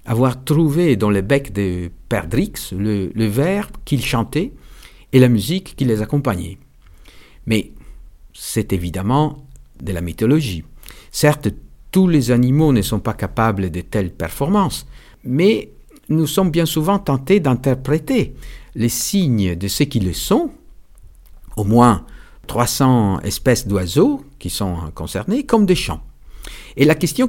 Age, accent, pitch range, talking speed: 50-69, French, 95-145 Hz, 135 wpm